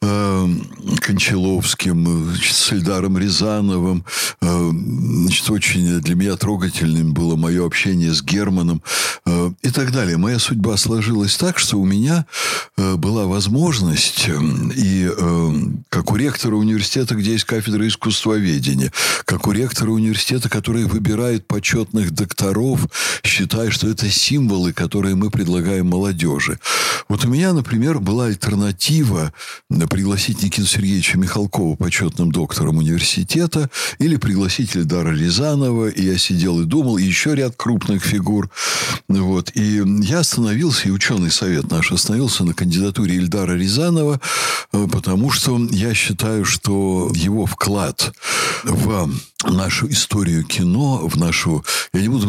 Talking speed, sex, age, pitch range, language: 125 wpm, male, 60-79, 90-115 Hz, Russian